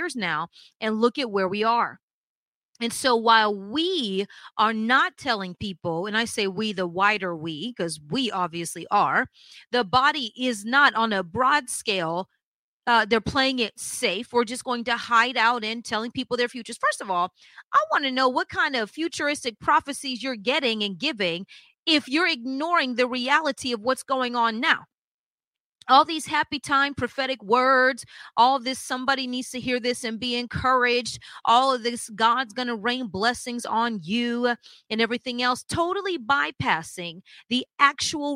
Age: 30-49